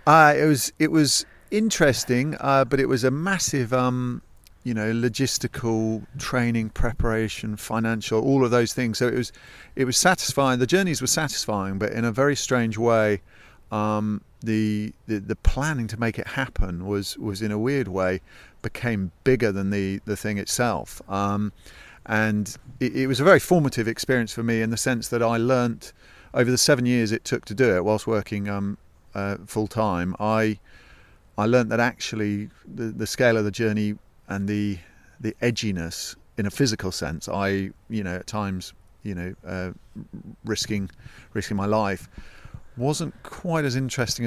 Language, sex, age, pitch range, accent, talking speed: English, male, 40-59, 100-125 Hz, British, 170 wpm